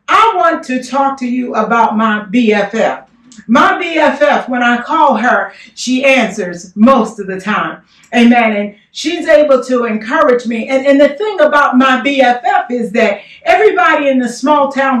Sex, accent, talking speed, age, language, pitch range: female, American, 170 wpm, 50-69, English, 220-290 Hz